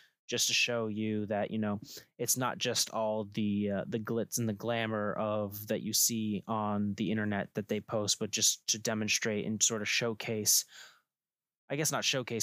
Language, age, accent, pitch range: English, 20-39, American, 105-120 Hz